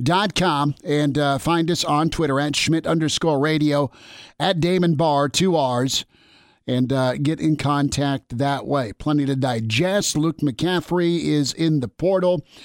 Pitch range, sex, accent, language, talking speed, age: 145-175 Hz, male, American, English, 155 wpm, 50-69